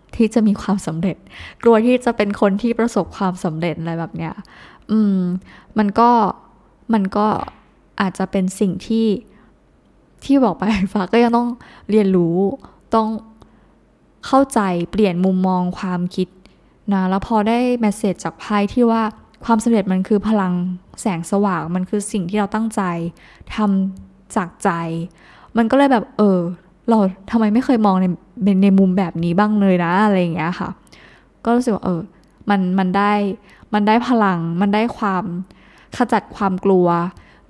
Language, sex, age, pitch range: Thai, female, 10-29, 185-220 Hz